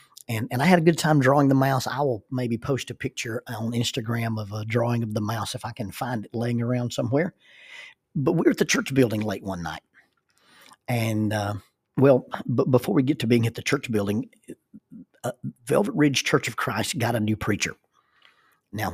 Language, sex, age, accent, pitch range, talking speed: English, male, 50-69, American, 115-130 Hz, 210 wpm